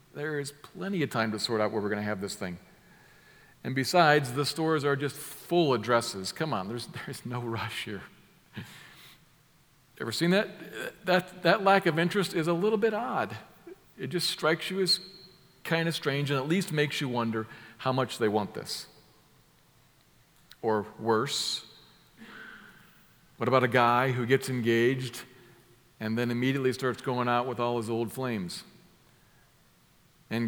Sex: male